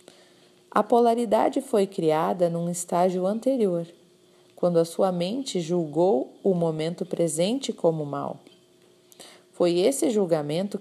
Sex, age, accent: female, 40-59, Brazilian